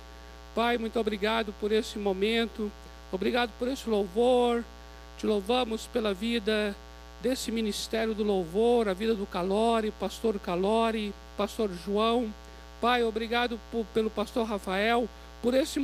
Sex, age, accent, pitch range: male, 60-79, Brazilian, 200-255 Hz